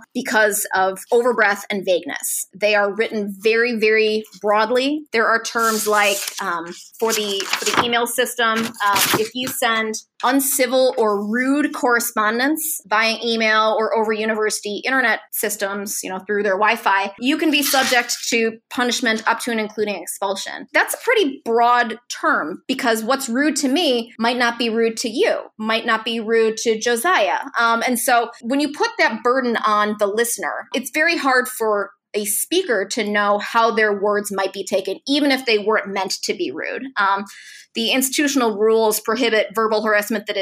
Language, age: English, 20-39